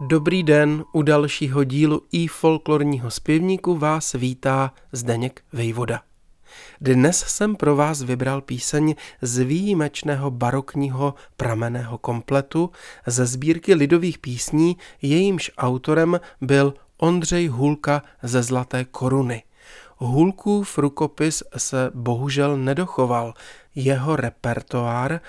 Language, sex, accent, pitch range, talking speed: Czech, male, native, 130-160 Hz, 100 wpm